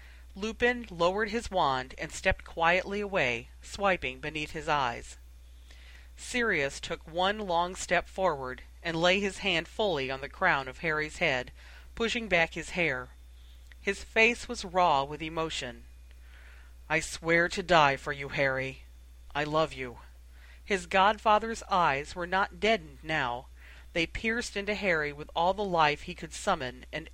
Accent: American